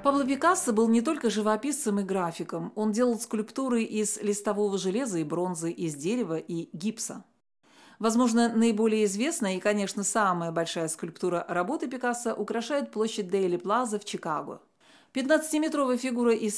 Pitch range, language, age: 195-255 Hz, Russian, 40-59